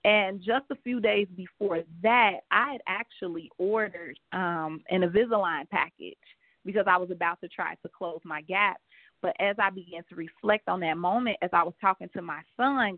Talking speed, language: 190 wpm, English